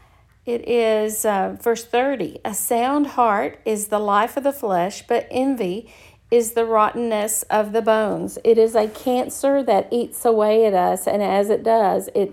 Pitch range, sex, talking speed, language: 210-250 Hz, female, 175 wpm, English